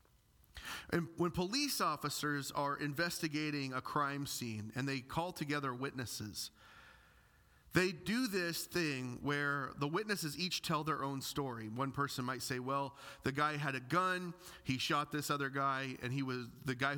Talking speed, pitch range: 165 wpm, 130-165 Hz